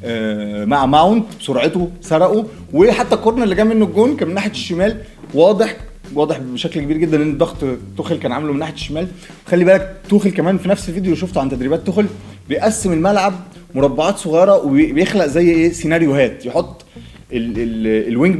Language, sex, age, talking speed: Arabic, male, 20-39, 165 wpm